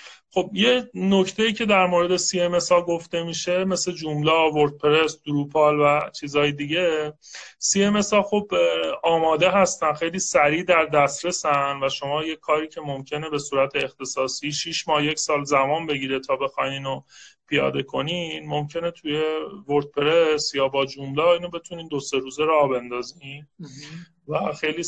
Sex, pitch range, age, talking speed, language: male, 145-175 Hz, 30-49, 150 wpm, Persian